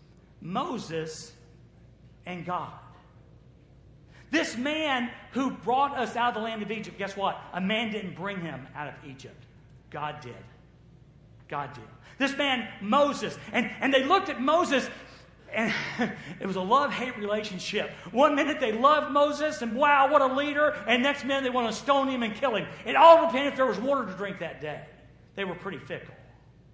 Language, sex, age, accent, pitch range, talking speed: English, male, 50-69, American, 180-280 Hz, 175 wpm